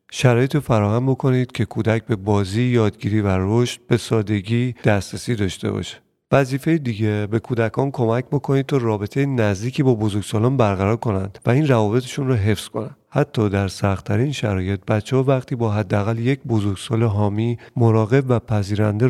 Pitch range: 105-125 Hz